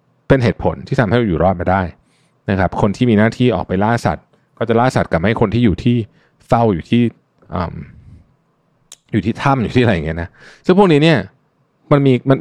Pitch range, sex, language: 95-135 Hz, male, Thai